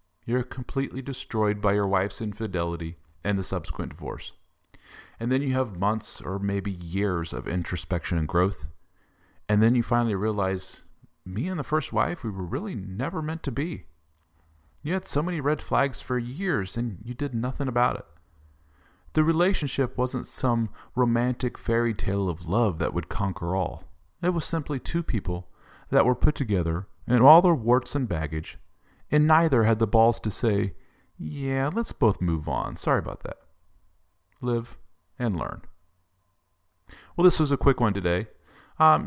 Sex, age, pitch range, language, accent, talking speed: male, 40-59, 85-125 Hz, English, American, 165 wpm